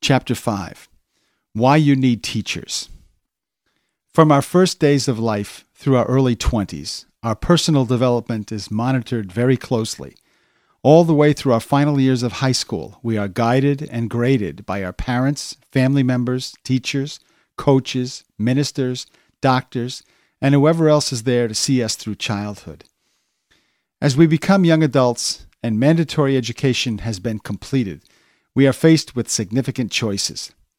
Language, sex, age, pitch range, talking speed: English, male, 50-69, 110-140 Hz, 145 wpm